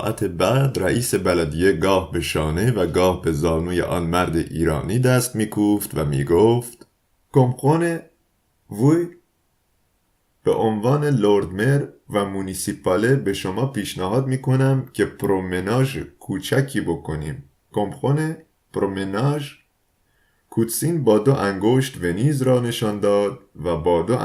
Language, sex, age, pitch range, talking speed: Persian, male, 30-49, 85-115 Hz, 110 wpm